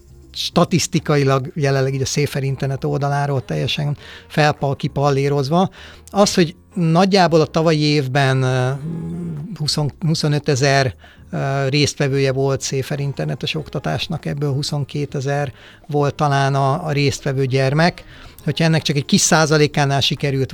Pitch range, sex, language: 140-160 Hz, male, Hungarian